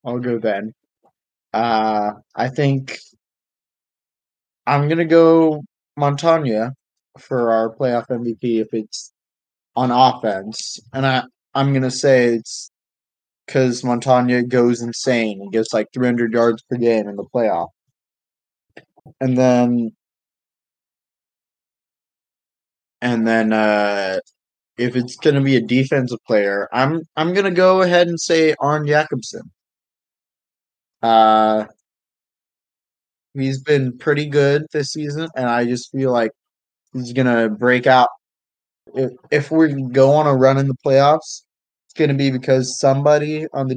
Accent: American